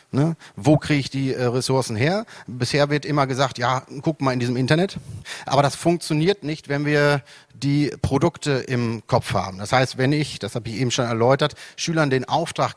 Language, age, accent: English, 40-59, German